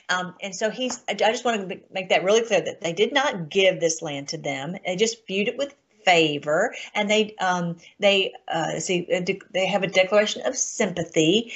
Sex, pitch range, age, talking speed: female, 180-235 Hz, 50-69, 200 wpm